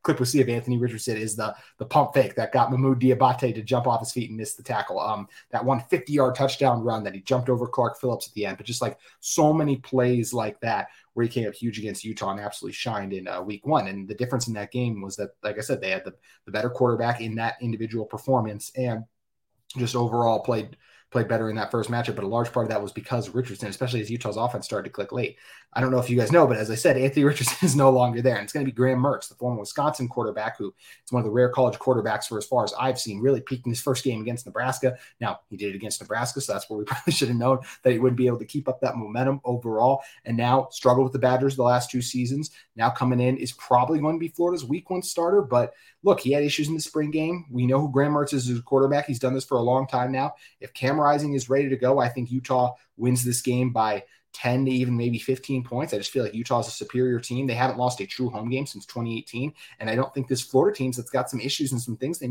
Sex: male